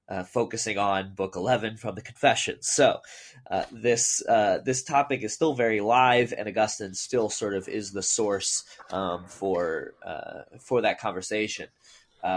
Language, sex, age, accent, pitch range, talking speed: English, male, 20-39, American, 110-145 Hz, 160 wpm